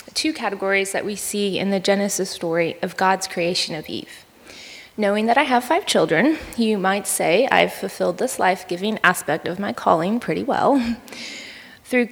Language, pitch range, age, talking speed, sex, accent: English, 200-235 Hz, 20-39, 170 wpm, female, American